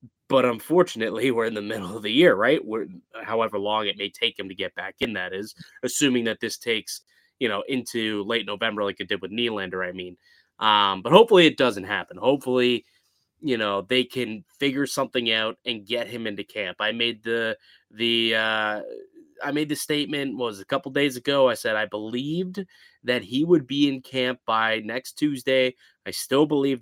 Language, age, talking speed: English, 20-39, 195 wpm